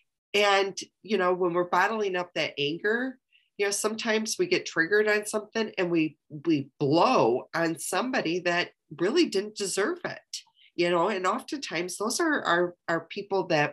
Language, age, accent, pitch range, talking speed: English, 40-59, American, 165-220 Hz, 165 wpm